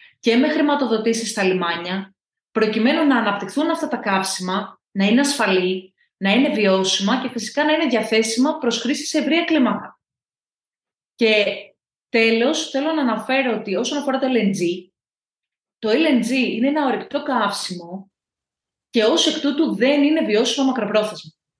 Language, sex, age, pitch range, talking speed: Greek, female, 30-49, 200-285 Hz, 140 wpm